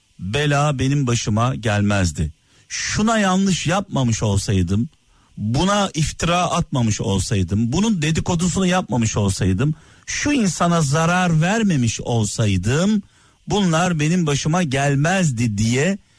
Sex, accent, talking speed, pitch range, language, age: male, native, 95 wpm, 115-165 Hz, Turkish, 50-69